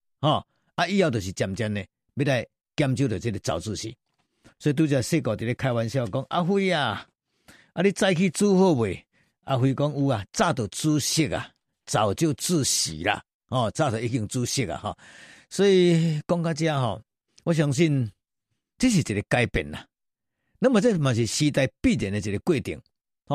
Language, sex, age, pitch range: Chinese, male, 50-69, 115-170 Hz